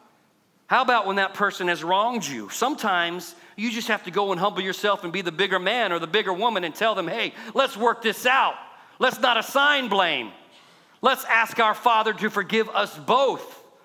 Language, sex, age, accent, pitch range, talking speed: English, male, 40-59, American, 175-235 Hz, 200 wpm